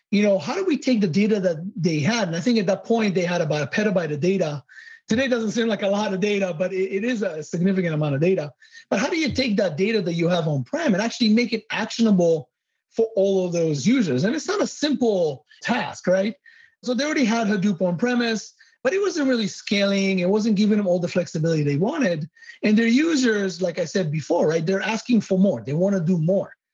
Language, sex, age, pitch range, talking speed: English, male, 30-49, 175-230 Hz, 235 wpm